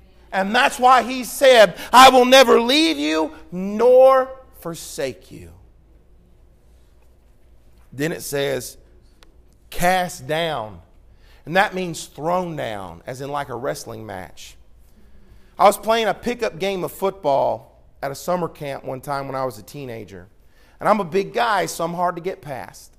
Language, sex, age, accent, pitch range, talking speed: English, male, 40-59, American, 135-195 Hz, 155 wpm